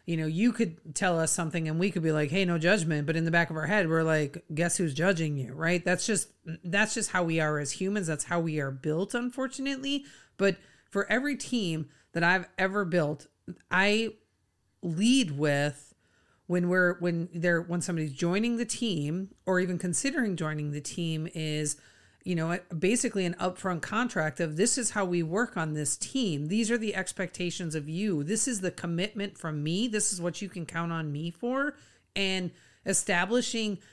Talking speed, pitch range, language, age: 195 wpm, 160-205 Hz, English, 40-59